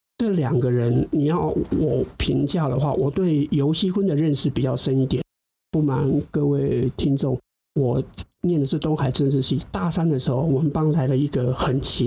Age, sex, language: 50-69, male, Chinese